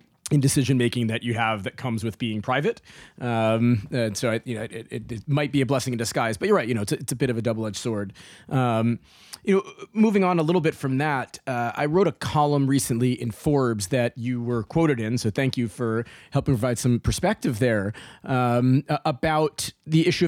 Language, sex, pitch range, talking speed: English, male, 115-145 Hz, 225 wpm